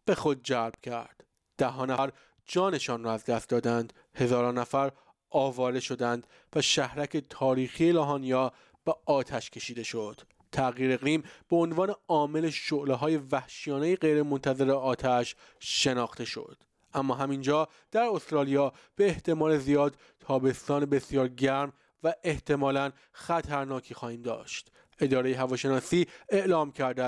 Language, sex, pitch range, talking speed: Persian, male, 130-155 Hz, 115 wpm